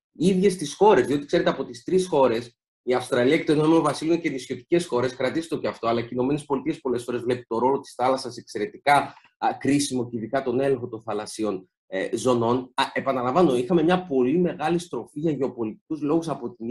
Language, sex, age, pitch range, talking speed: Greek, male, 30-49, 120-160 Hz, 190 wpm